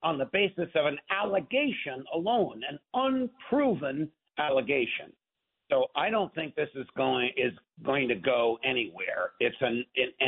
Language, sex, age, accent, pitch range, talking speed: English, male, 60-79, American, 130-225 Hz, 140 wpm